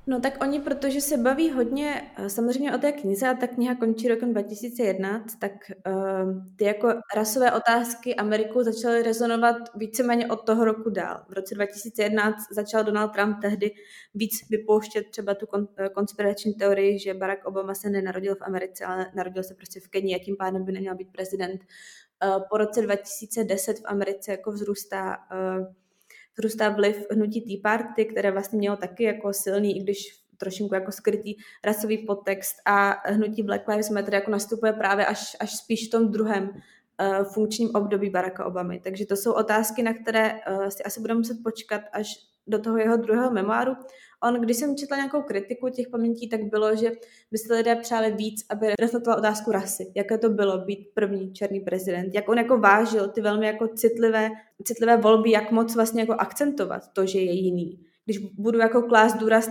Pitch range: 200-225 Hz